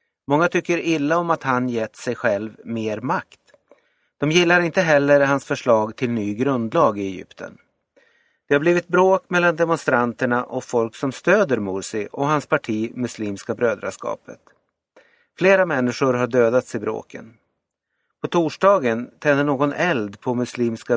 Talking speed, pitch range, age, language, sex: 145 wpm, 120-170 Hz, 30-49, Swedish, male